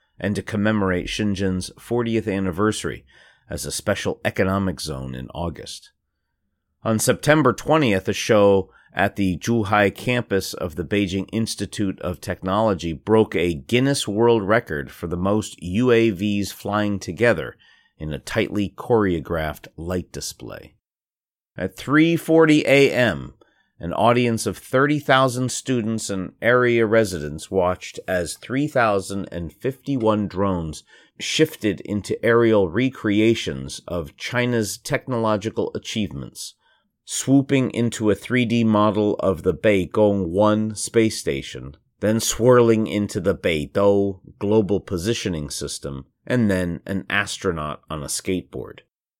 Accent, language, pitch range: American, English, 90-115 Hz